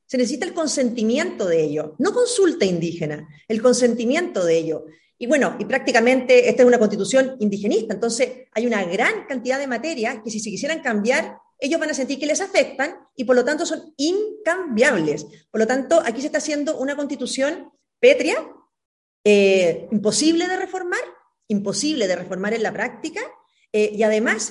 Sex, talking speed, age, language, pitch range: female, 170 wpm, 40-59, Spanish, 215-305 Hz